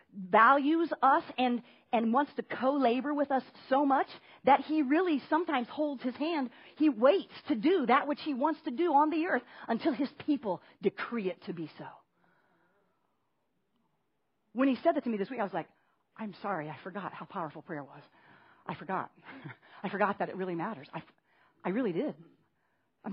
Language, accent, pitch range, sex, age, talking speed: English, American, 225-310 Hz, female, 40-59, 185 wpm